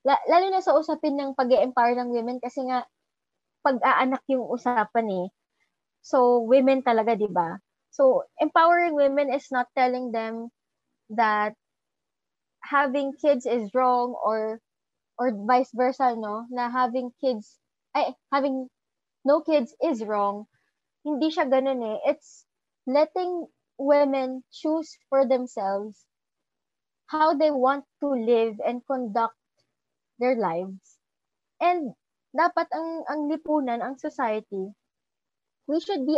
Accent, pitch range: Filipino, 230-290 Hz